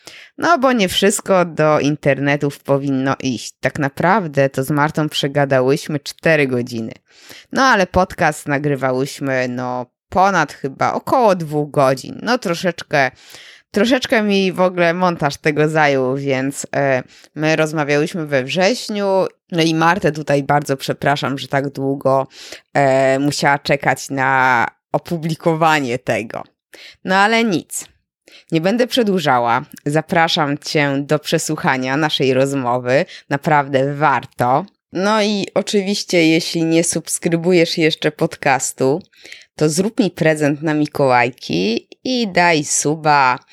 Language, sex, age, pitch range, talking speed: Polish, female, 20-39, 140-175 Hz, 120 wpm